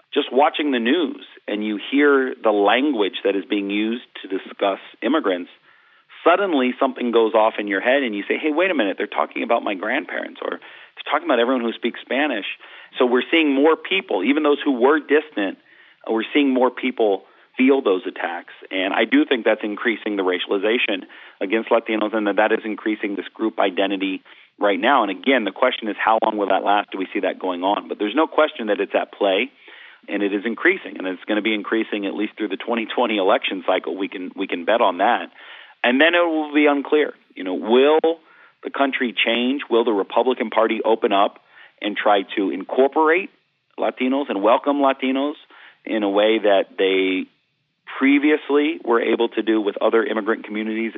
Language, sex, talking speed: English, male, 200 wpm